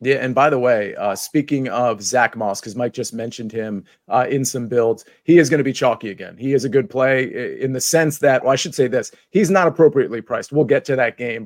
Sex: male